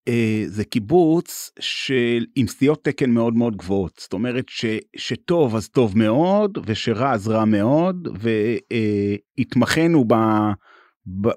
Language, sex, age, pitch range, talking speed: Hebrew, male, 30-49, 110-155 Hz, 120 wpm